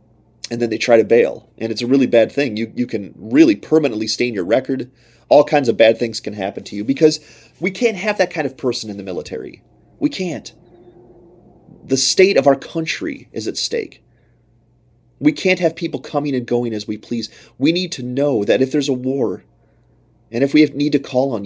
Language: English